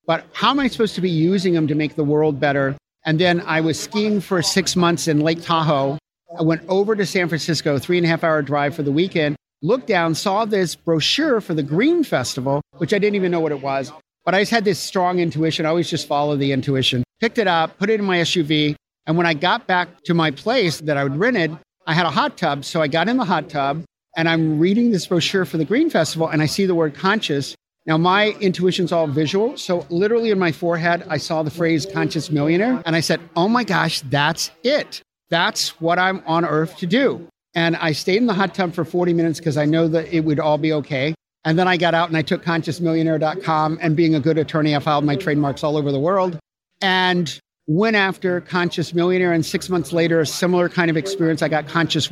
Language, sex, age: English, male, 50-69